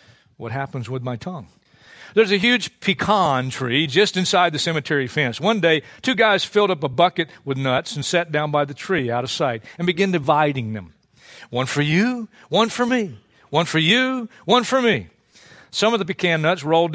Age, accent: 50-69, American